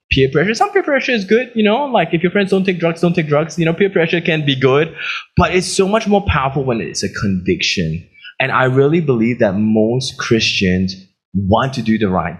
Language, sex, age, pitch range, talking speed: English, male, 20-39, 100-145 Hz, 230 wpm